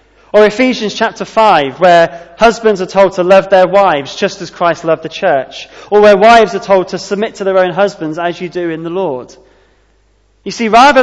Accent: British